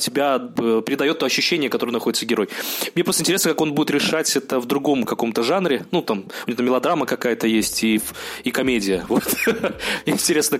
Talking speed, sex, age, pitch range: 170 wpm, male, 20-39, 125-155 Hz